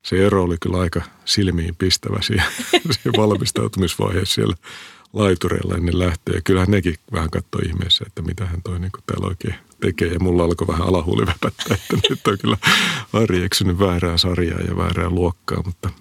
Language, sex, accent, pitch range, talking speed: Finnish, male, native, 85-95 Hz, 155 wpm